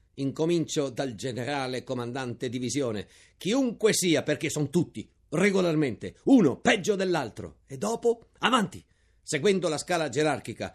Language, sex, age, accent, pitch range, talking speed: Italian, male, 50-69, native, 130-195 Hz, 115 wpm